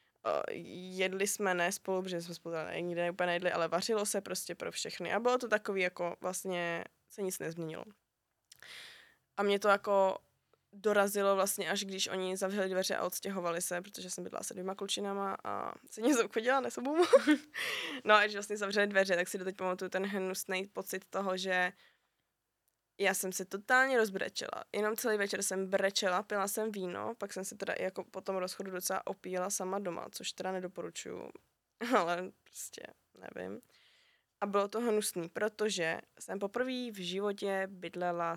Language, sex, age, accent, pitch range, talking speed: Czech, female, 20-39, native, 180-210 Hz, 170 wpm